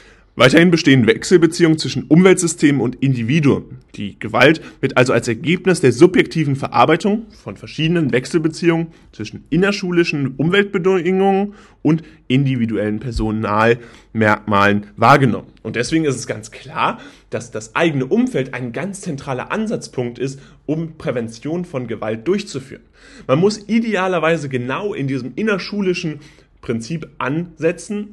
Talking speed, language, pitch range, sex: 115 wpm, German, 120-170 Hz, male